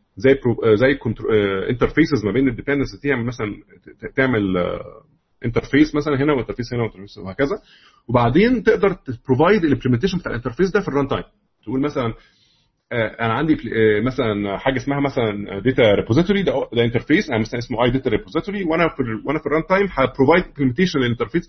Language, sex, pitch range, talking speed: Arabic, male, 120-170 Hz, 135 wpm